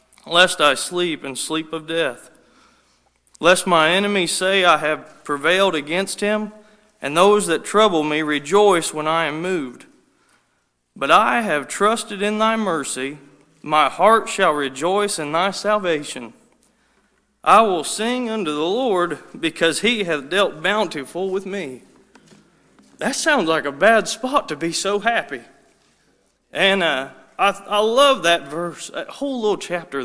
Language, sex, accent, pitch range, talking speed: English, male, American, 165-235 Hz, 150 wpm